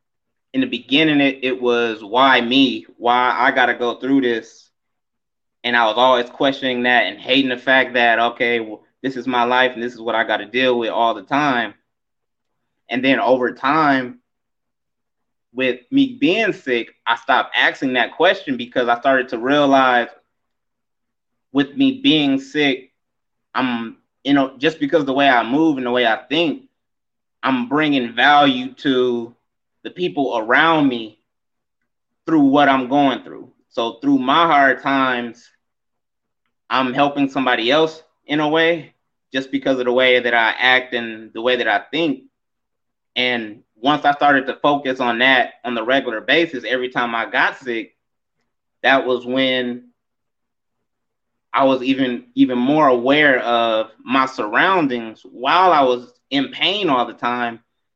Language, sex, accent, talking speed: English, male, American, 160 wpm